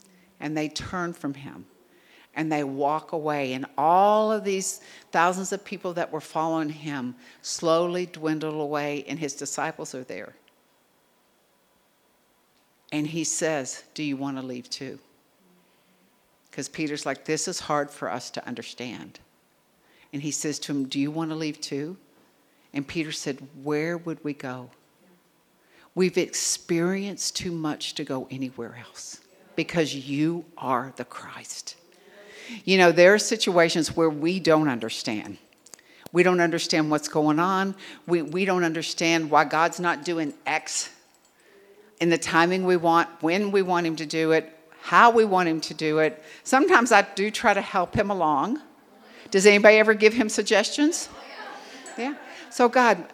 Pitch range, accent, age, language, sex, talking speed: 150-190 Hz, American, 60-79, English, female, 155 wpm